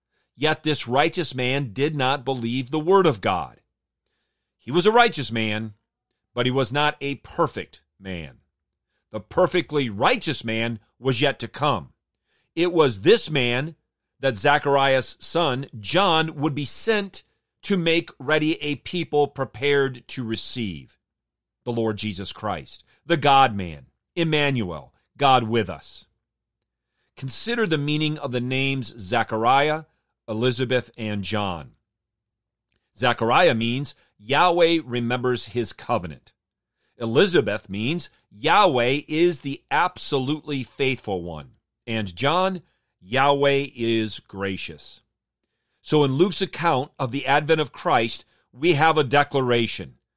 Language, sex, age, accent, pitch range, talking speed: English, male, 40-59, American, 115-155 Hz, 120 wpm